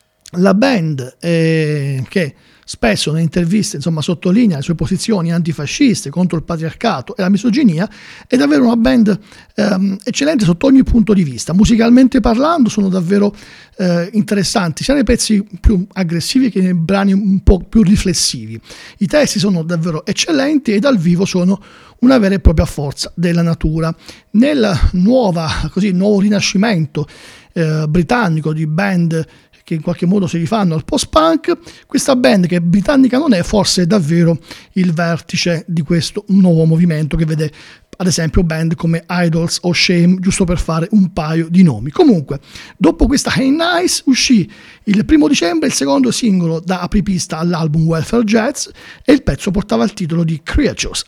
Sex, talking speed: male, 155 wpm